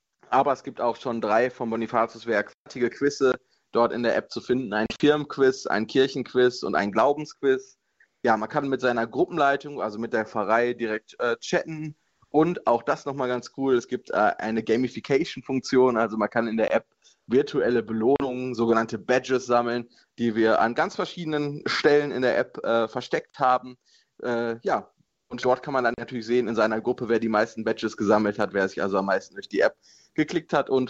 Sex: male